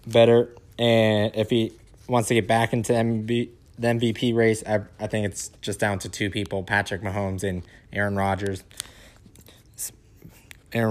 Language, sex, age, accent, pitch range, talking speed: English, male, 20-39, American, 105-125 Hz, 155 wpm